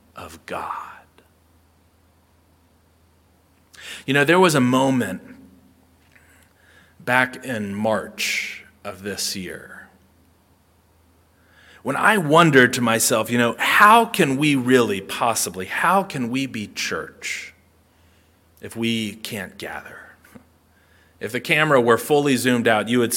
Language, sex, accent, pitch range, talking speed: English, male, American, 90-145 Hz, 115 wpm